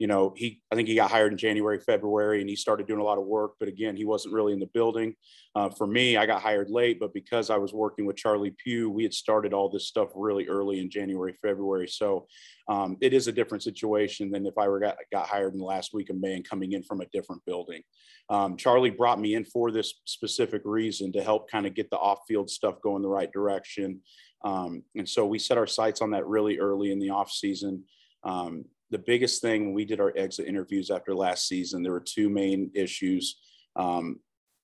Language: English